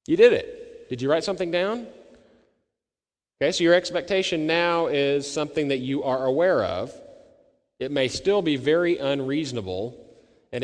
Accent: American